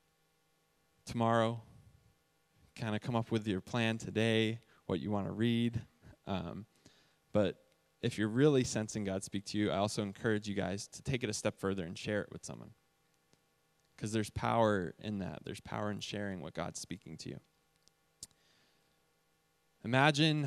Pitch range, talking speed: 95-115 Hz, 160 wpm